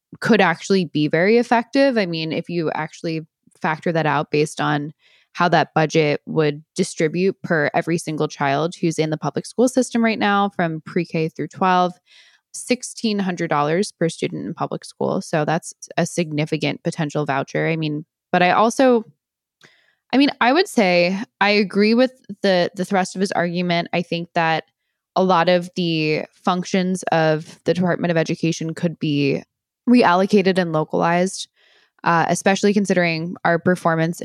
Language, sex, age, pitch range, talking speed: English, female, 10-29, 155-195 Hz, 160 wpm